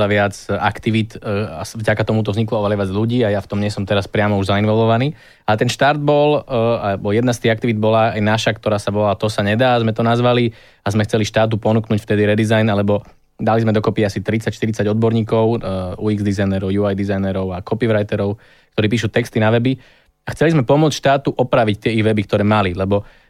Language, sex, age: Slovak, male, 20-39